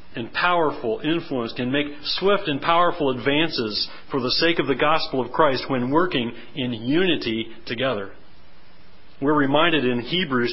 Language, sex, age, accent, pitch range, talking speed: English, male, 40-59, American, 125-170 Hz, 150 wpm